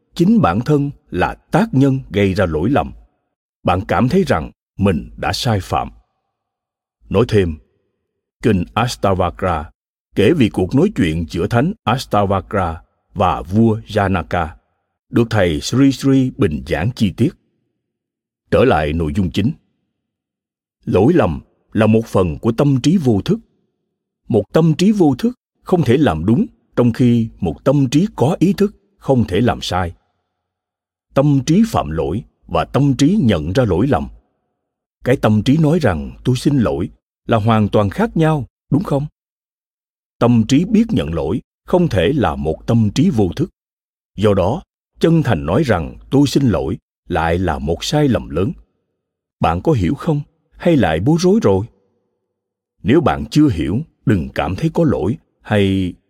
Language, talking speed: Vietnamese, 160 wpm